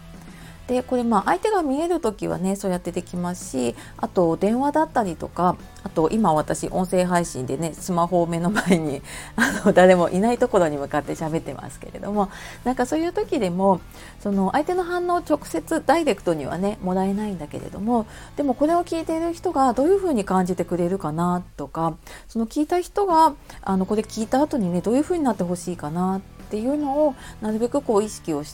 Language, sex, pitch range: Japanese, female, 160-255 Hz